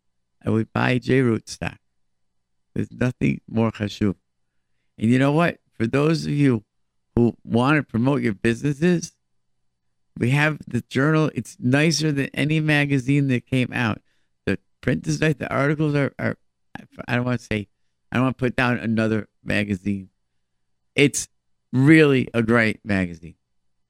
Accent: American